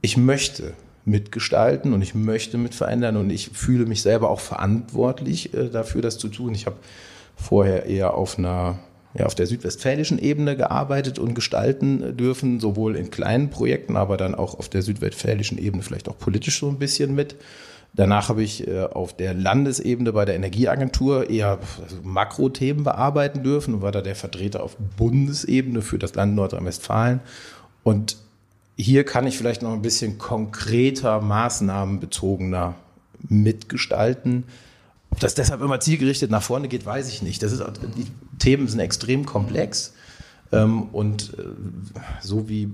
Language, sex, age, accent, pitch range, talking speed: German, male, 40-59, German, 105-130 Hz, 150 wpm